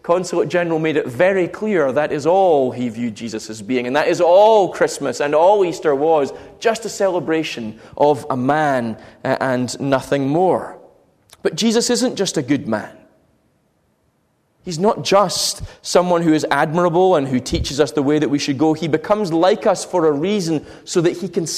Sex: male